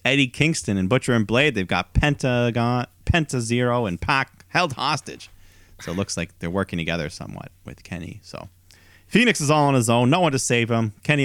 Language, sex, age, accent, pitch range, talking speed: English, male, 30-49, American, 90-115 Hz, 205 wpm